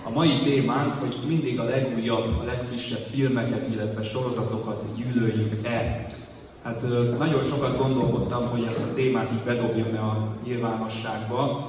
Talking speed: 130 wpm